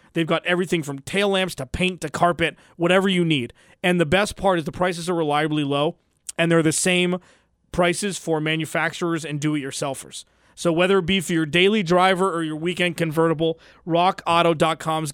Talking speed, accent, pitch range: 180 wpm, American, 150-180 Hz